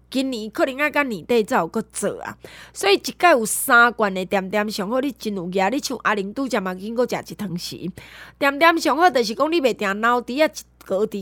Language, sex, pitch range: Chinese, female, 210-285 Hz